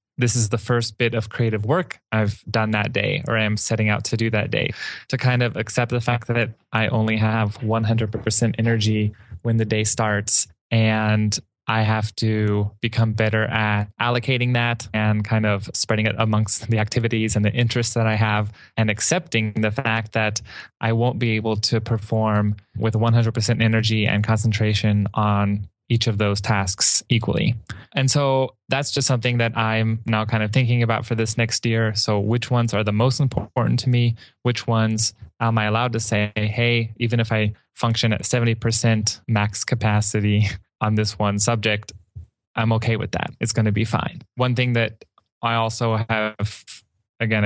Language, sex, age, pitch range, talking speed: English, male, 20-39, 105-120 Hz, 180 wpm